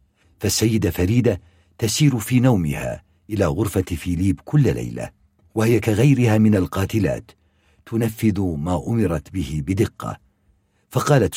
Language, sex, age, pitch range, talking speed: Arabic, male, 60-79, 90-130 Hz, 105 wpm